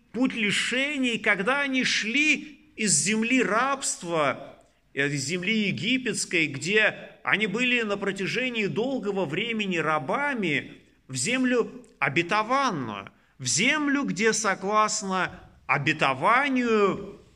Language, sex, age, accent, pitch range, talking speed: Russian, male, 40-59, native, 170-240 Hz, 95 wpm